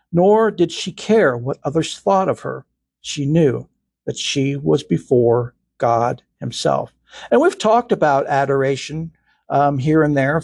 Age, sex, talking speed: 60-79, male, 150 wpm